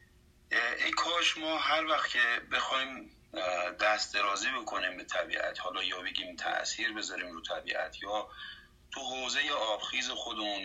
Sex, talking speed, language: male, 140 wpm, Persian